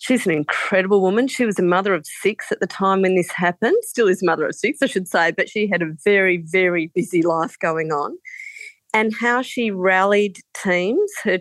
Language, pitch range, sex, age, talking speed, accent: English, 170-215 Hz, female, 40-59, 210 wpm, Australian